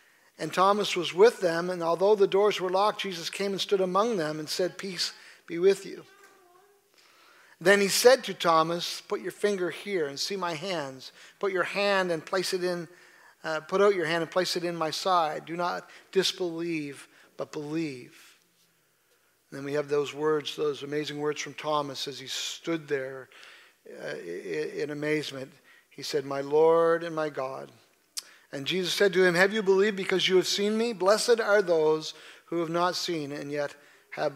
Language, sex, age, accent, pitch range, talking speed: English, male, 50-69, American, 150-195 Hz, 185 wpm